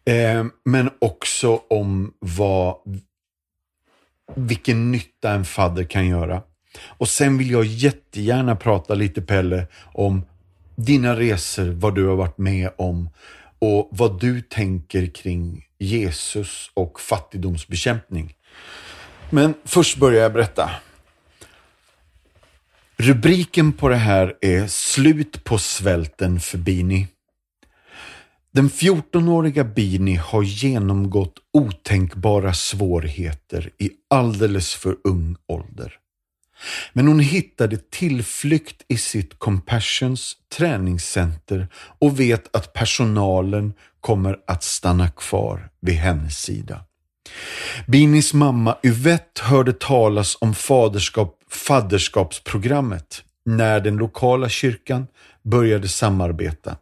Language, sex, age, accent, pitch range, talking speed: Swedish, male, 40-59, native, 90-120 Hz, 100 wpm